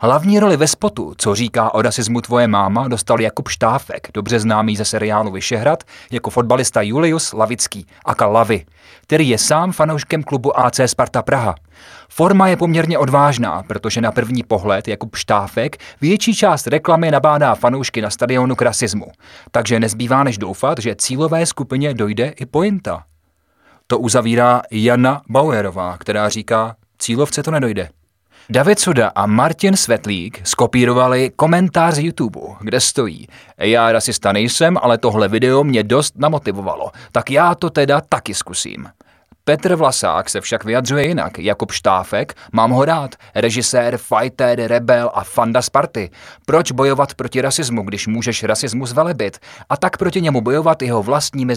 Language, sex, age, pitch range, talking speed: Czech, male, 30-49, 110-145 Hz, 150 wpm